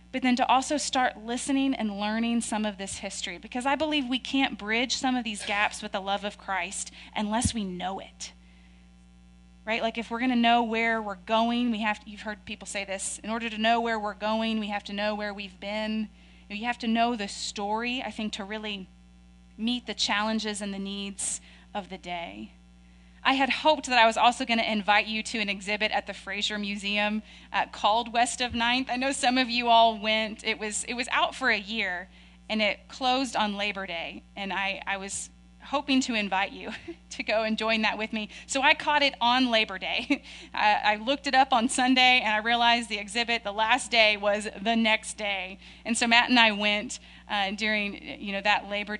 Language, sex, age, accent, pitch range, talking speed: English, female, 30-49, American, 200-235 Hz, 220 wpm